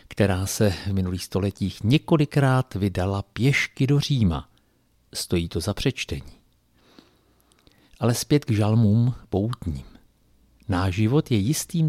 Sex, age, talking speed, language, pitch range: male, 50-69, 115 wpm, Czech, 100-130 Hz